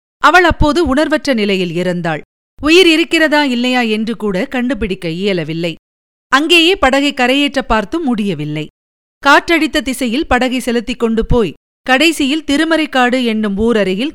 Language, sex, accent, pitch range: Tamil, female, native, 200-285 Hz